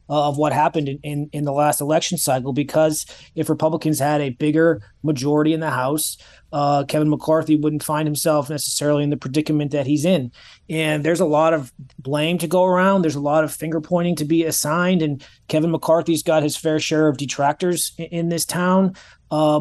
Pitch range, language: 150-170 Hz, English